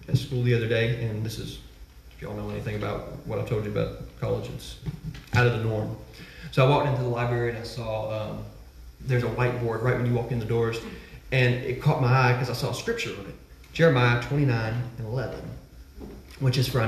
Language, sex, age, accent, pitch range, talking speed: English, male, 30-49, American, 120-150 Hz, 230 wpm